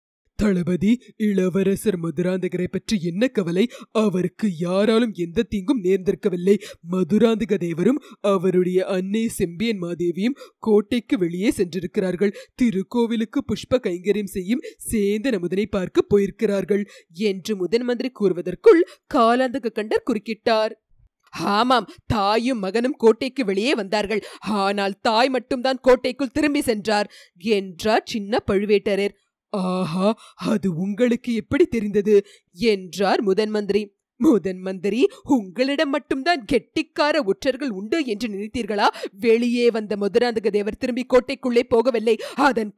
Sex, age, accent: female, 20-39, native